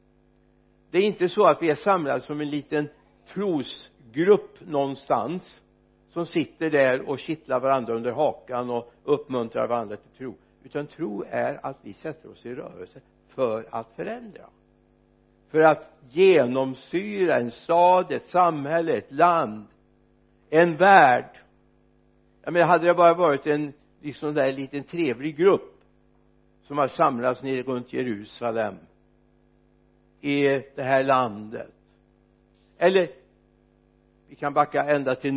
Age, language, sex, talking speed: 60-79, Swedish, male, 130 wpm